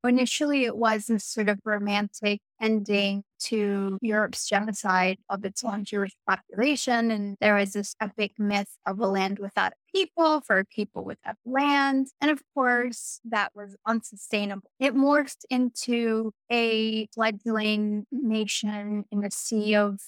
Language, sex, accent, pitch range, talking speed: English, female, American, 205-250 Hz, 145 wpm